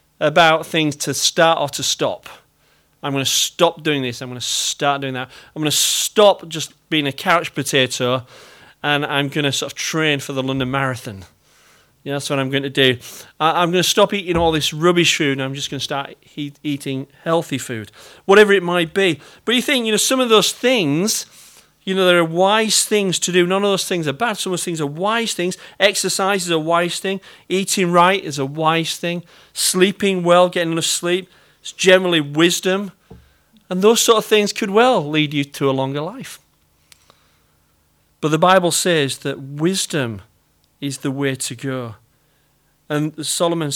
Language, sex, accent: English, male, British